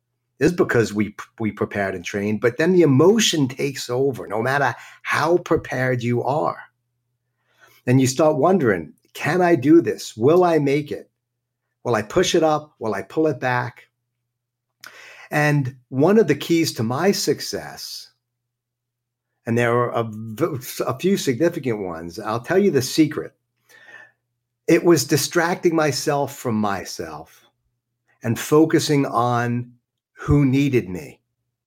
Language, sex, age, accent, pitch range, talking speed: English, male, 50-69, American, 120-160 Hz, 140 wpm